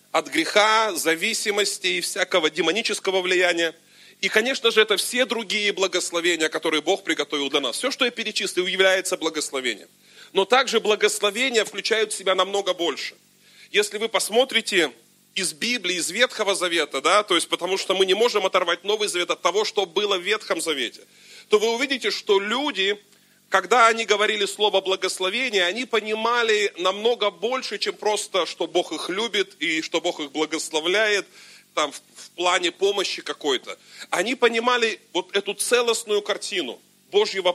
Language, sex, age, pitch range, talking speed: Russian, male, 30-49, 175-225 Hz, 155 wpm